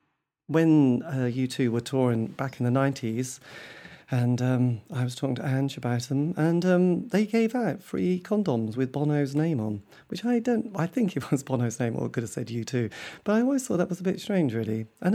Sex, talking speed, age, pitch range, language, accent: male, 225 wpm, 40-59, 125-170 Hz, English, British